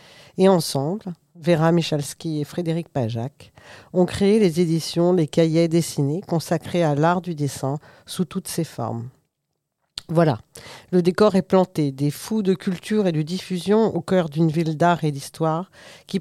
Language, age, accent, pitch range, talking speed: French, 50-69, French, 150-185 Hz, 160 wpm